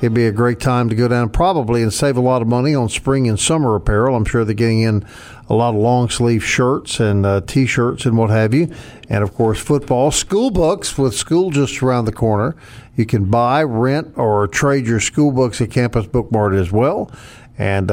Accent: American